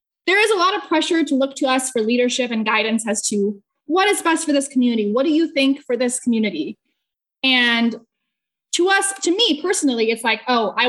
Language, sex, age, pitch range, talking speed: English, female, 20-39, 235-300 Hz, 215 wpm